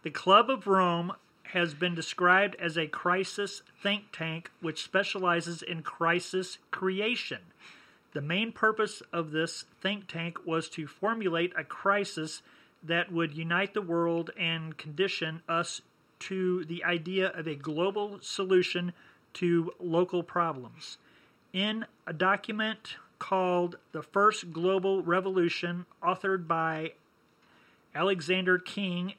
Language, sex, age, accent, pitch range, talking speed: English, male, 40-59, American, 165-195 Hz, 120 wpm